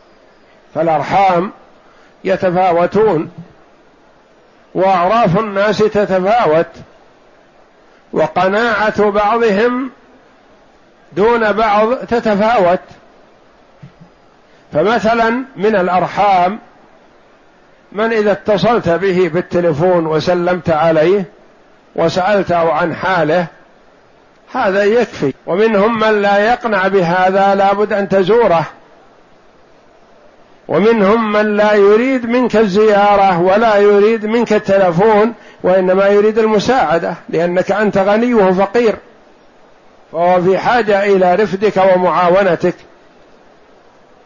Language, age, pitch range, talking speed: Arabic, 50-69, 185-215 Hz, 75 wpm